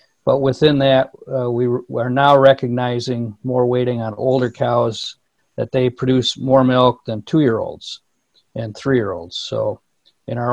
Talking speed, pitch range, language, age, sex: 140 wpm, 115-130 Hz, English, 50-69, male